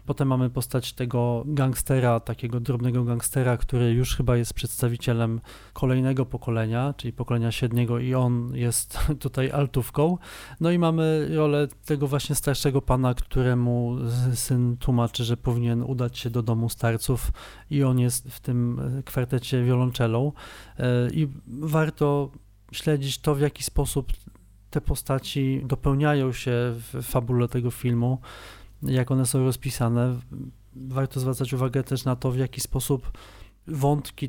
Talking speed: 135 wpm